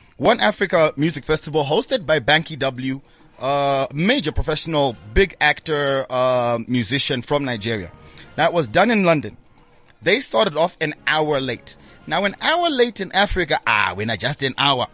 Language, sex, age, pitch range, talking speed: English, male, 30-49, 140-195 Hz, 160 wpm